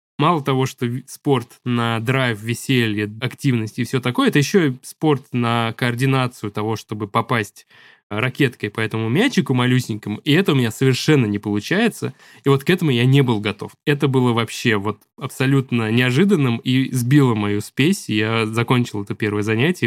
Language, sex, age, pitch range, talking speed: Russian, male, 20-39, 110-140 Hz, 165 wpm